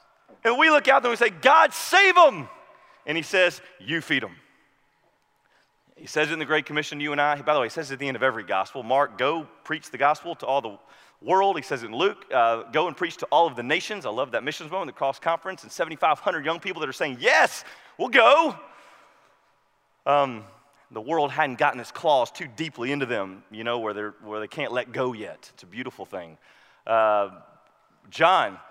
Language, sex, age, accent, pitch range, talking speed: English, male, 30-49, American, 125-165 Hz, 215 wpm